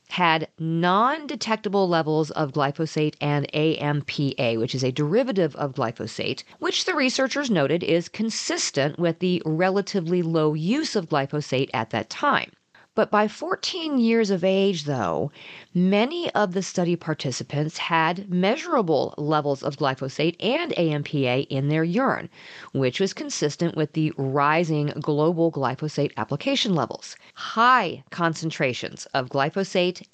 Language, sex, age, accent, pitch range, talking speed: English, female, 40-59, American, 150-205 Hz, 130 wpm